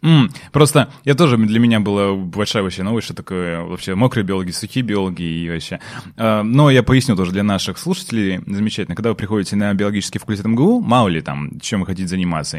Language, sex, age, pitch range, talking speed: Russian, male, 20-39, 95-150 Hz, 175 wpm